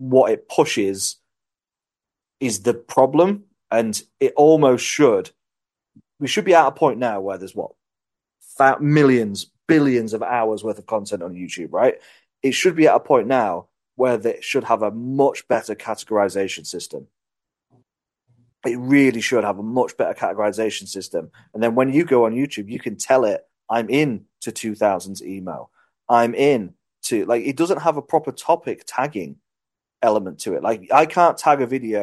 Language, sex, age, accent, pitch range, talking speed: English, male, 30-49, British, 105-140 Hz, 170 wpm